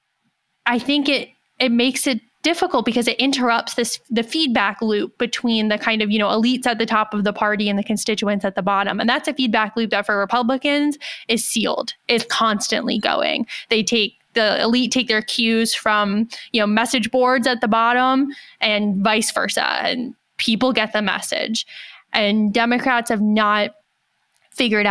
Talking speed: 180 wpm